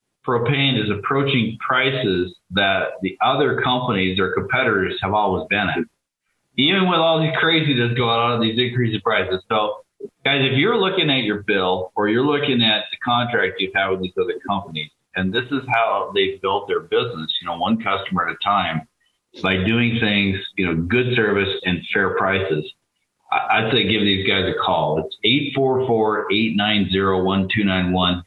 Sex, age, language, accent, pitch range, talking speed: male, 40-59, English, American, 95-120 Hz, 170 wpm